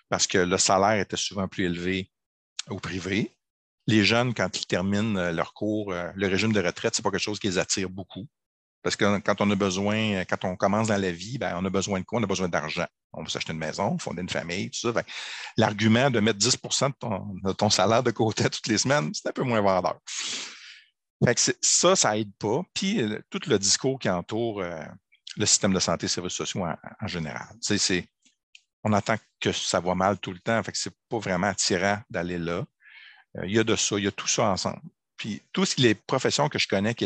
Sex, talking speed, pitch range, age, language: male, 230 wpm, 90-110 Hz, 50-69, French